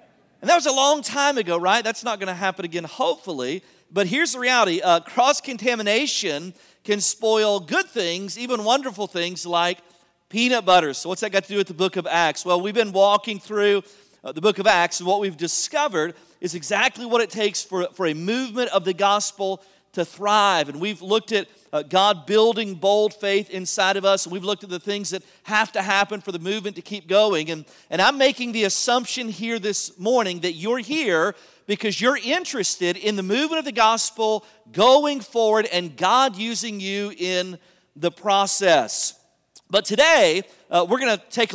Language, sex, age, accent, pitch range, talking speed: English, male, 40-59, American, 185-230 Hz, 195 wpm